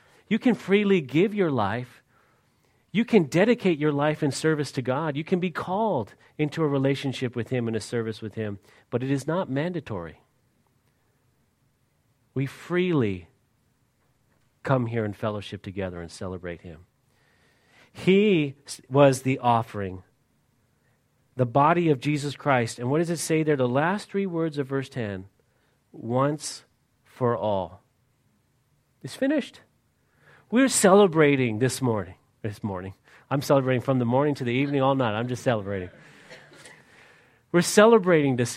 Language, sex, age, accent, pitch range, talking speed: English, male, 40-59, American, 120-170 Hz, 145 wpm